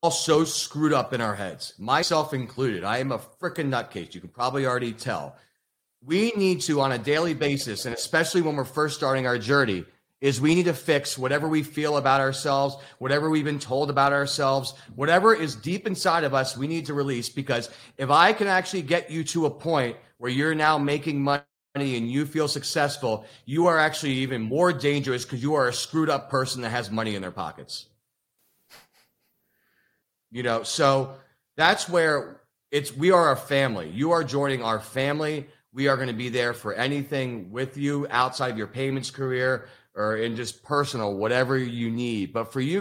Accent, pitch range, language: American, 120-150 Hz, English